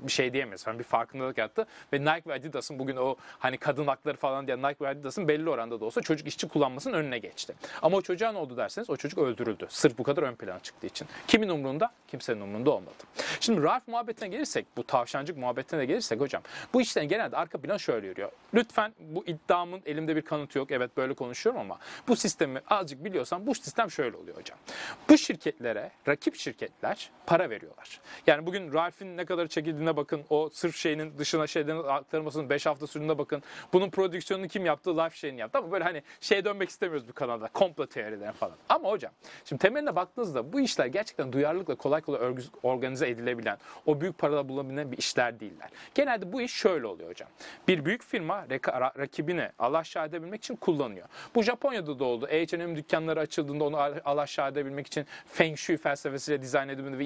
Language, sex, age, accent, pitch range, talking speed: Turkish, male, 40-59, native, 140-185 Hz, 185 wpm